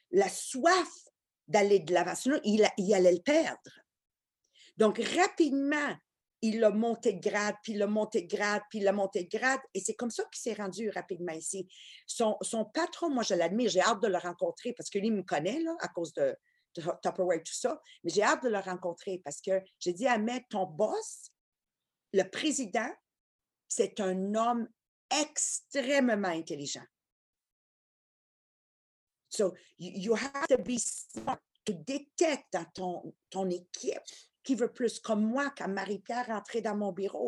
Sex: female